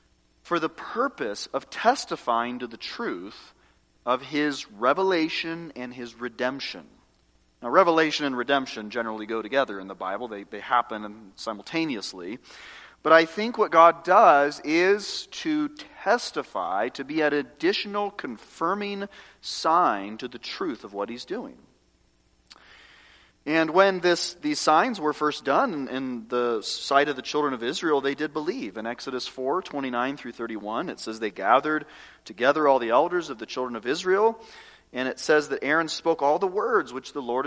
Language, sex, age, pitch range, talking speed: English, male, 40-59, 115-165 Hz, 160 wpm